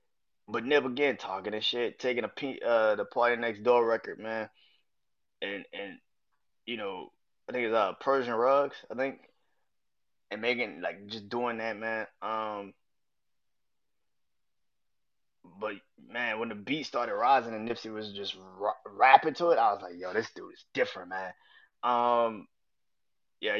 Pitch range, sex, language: 110-155 Hz, male, English